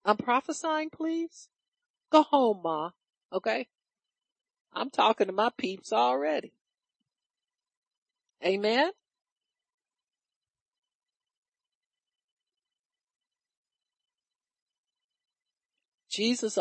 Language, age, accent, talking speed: English, 50-69, American, 55 wpm